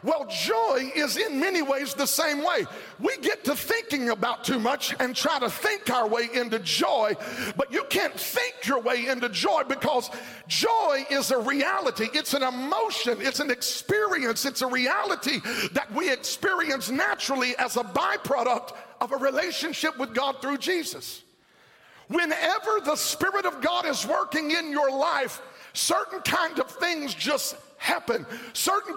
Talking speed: 160 wpm